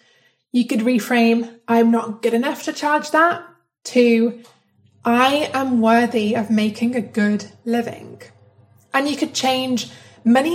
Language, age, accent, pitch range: English, 20-39, British, 220-260 Hz